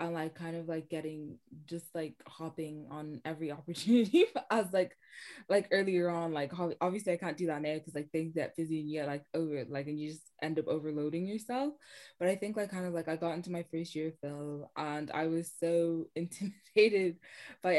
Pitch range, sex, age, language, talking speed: 150-175 Hz, female, 20-39, English, 215 wpm